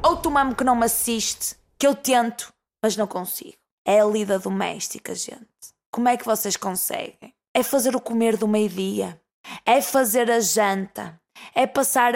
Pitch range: 215-260 Hz